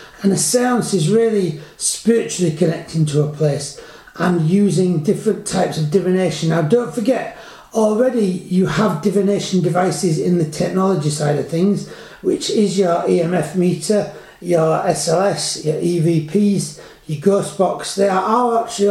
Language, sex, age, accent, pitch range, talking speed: English, male, 30-49, British, 175-215 Hz, 145 wpm